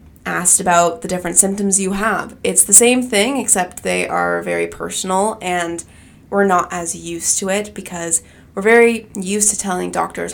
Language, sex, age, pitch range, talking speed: English, female, 20-39, 165-205 Hz, 175 wpm